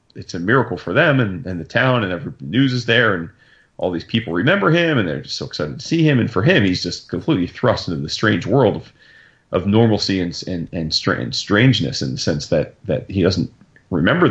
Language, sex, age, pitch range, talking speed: English, male, 30-49, 95-130 Hz, 235 wpm